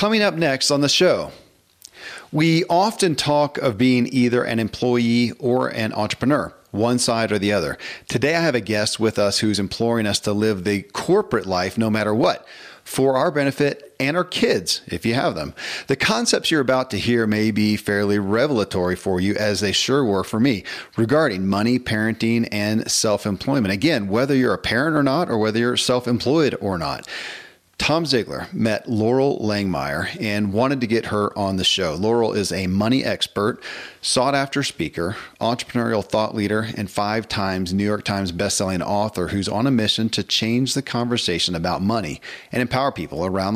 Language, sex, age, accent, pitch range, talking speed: English, male, 40-59, American, 105-125 Hz, 180 wpm